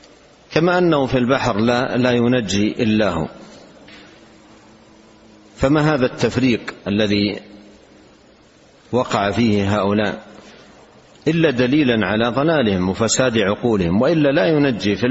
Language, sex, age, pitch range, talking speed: Arabic, male, 50-69, 105-130 Hz, 105 wpm